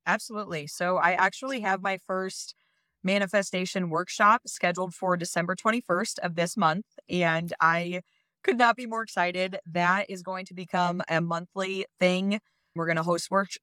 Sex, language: female, English